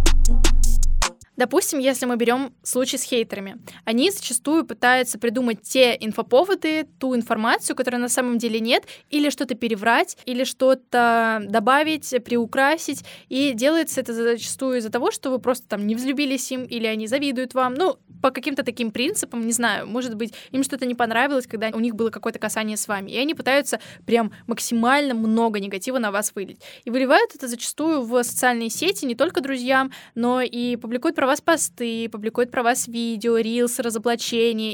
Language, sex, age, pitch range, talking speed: Russian, female, 10-29, 225-265 Hz, 170 wpm